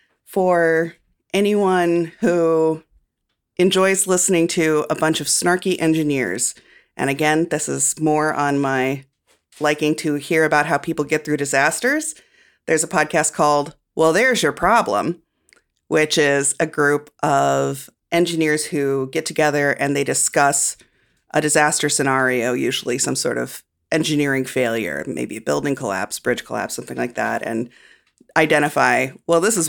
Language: English